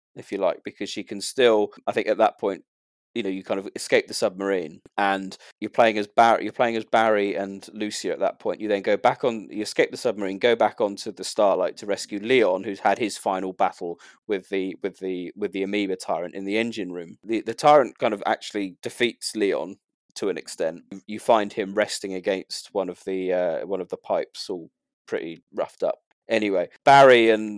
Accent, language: British, English